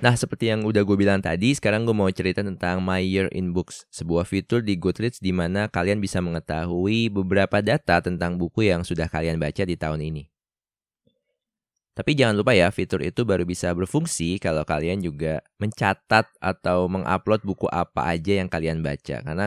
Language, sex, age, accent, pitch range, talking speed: Indonesian, male, 20-39, native, 80-100 Hz, 180 wpm